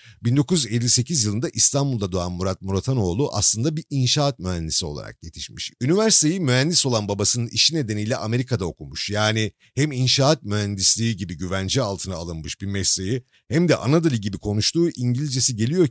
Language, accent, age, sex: Turkish, native, 50-69, male